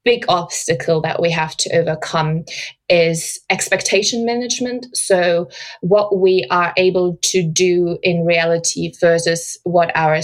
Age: 20-39